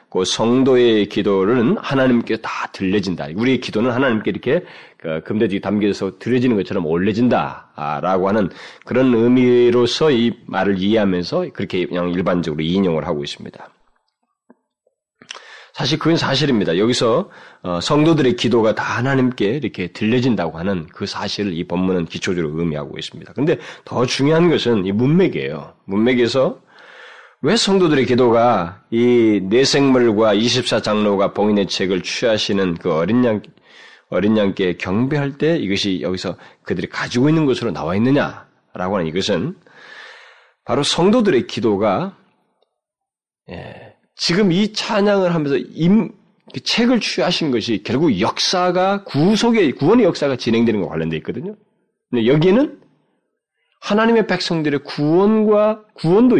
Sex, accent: male, native